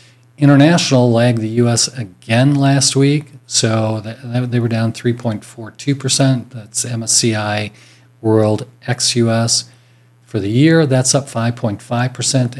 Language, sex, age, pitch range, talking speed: English, male, 40-59, 110-125 Hz, 110 wpm